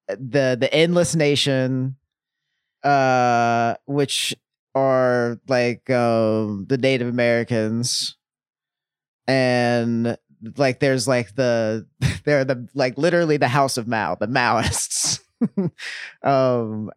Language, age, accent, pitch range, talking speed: English, 30-49, American, 120-145 Hz, 100 wpm